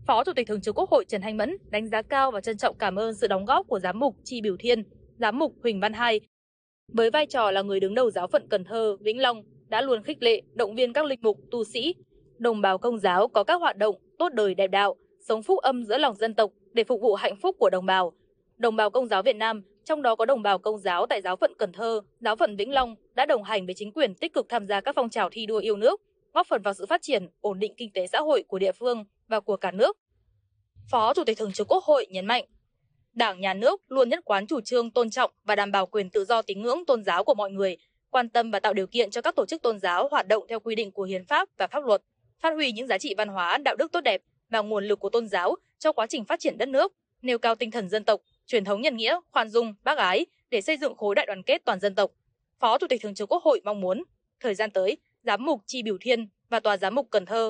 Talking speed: 280 wpm